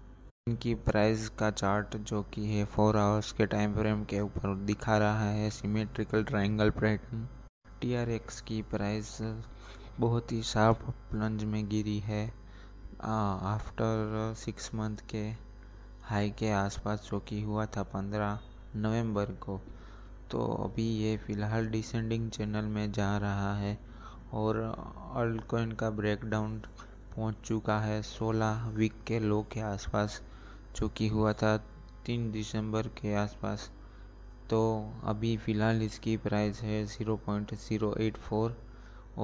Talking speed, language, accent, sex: 125 wpm, Hindi, native, male